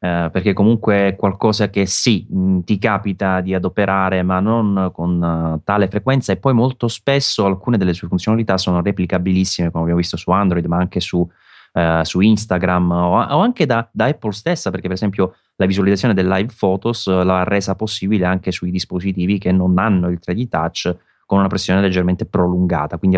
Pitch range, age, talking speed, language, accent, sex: 90-100 Hz, 30-49, 175 wpm, Italian, native, male